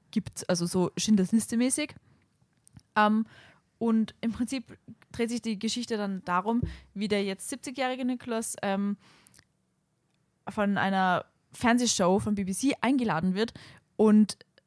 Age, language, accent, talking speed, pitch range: 20-39, German, German, 115 wpm, 180-220 Hz